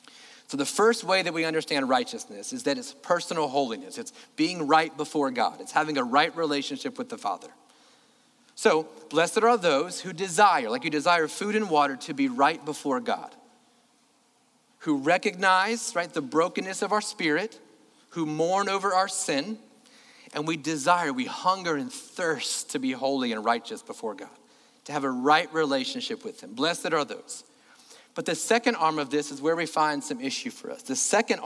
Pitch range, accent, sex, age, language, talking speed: 155-245 Hz, American, male, 40-59, English, 180 wpm